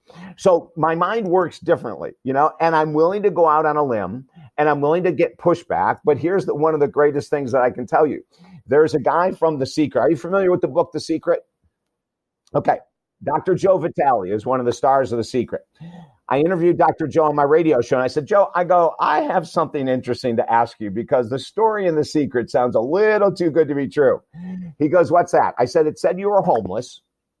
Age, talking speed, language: 50-69, 230 wpm, English